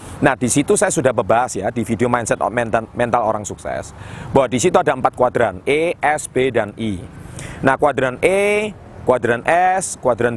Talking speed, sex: 175 wpm, male